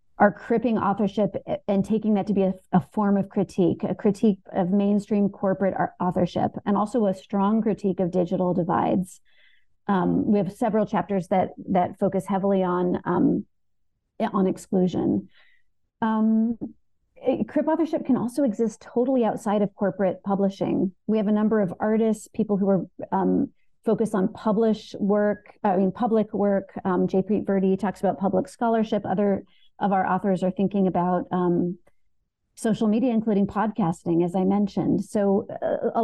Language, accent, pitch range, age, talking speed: English, American, 190-220 Hz, 40-59, 155 wpm